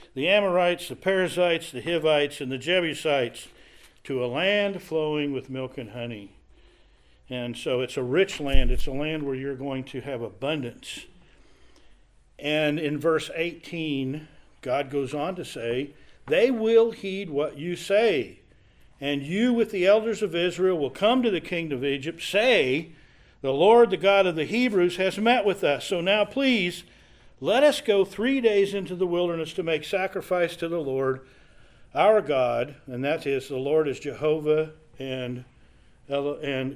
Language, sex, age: English, male, 50-69